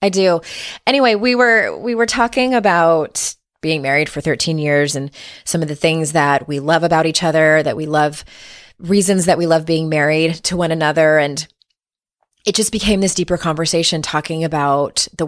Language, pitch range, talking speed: English, 150-170 Hz, 185 wpm